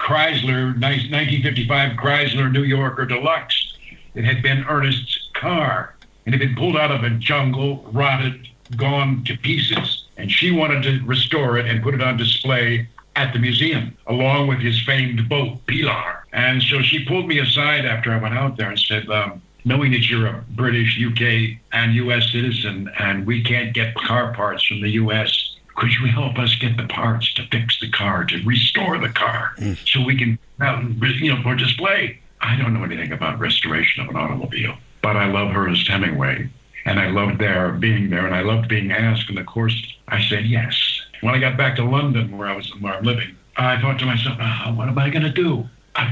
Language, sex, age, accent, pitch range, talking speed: English, male, 60-79, American, 115-135 Hz, 200 wpm